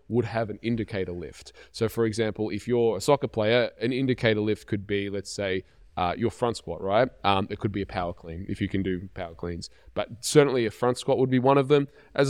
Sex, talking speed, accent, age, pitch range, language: male, 240 wpm, Australian, 20-39, 100-120 Hz, English